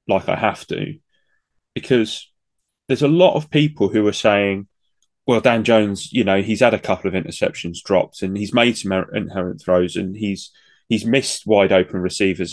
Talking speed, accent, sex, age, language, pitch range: 180 wpm, British, male, 20-39, English, 95-130 Hz